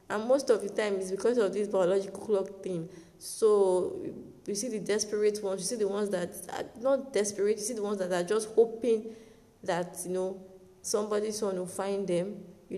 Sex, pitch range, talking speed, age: female, 180-210 Hz, 200 wpm, 20-39